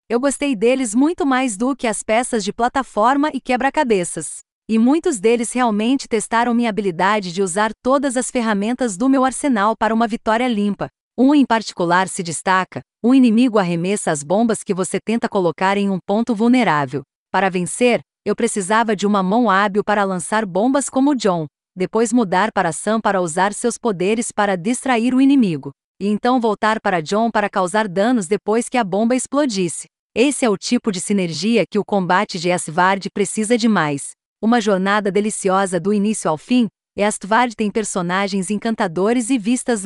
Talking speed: 175 wpm